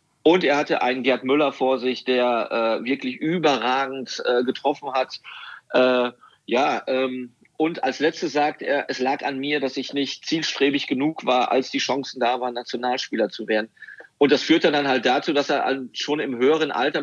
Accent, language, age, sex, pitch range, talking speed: German, German, 40-59, male, 125-140 Hz, 185 wpm